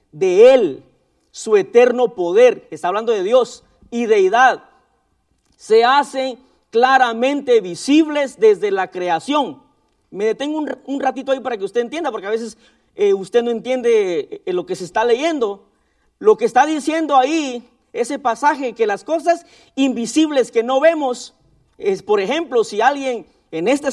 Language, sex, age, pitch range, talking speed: Spanish, male, 40-59, 240-340 Hz, 150 wpm